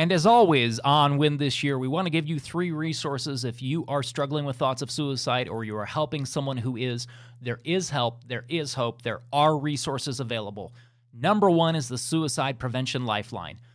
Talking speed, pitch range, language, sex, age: 200 wpm, 120-165 Hz, English, male, 30-49